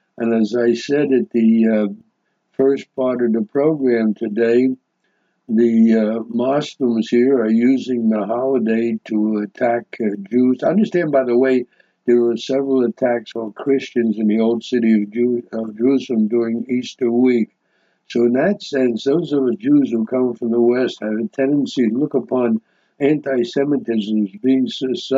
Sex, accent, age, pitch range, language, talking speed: male, American, 60-79, 115-135 Hz, English, 160 wpm